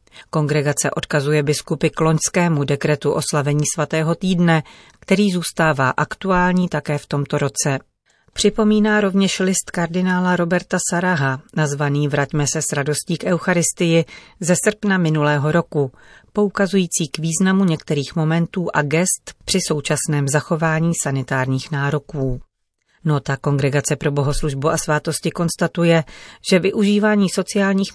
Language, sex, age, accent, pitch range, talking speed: Czech, female, 40-59, native, 145-180 Hz, 120 wpm